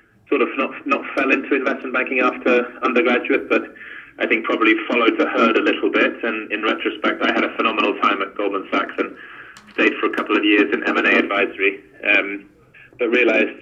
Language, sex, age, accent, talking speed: English, male, 20-39, British, 195 wpm